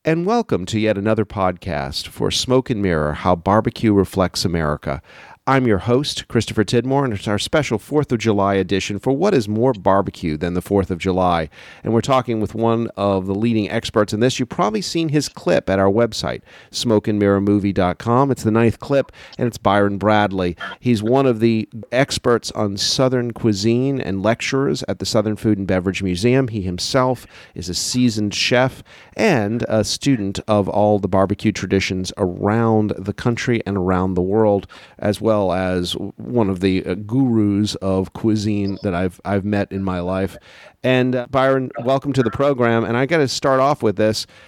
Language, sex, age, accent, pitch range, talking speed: English, male, 40-59, American, 100-125 Hz, 180 wpm